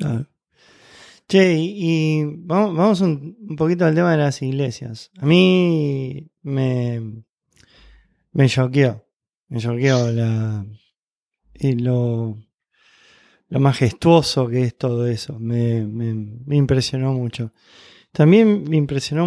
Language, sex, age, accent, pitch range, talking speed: Spanish, male, 20-39, Argentinian, 125-160 Hz, 120 wpm